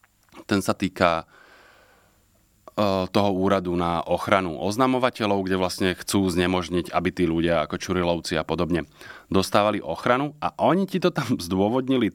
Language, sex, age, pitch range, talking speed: Slovak, male, 30-49, 90-110 Hz, 135 wpm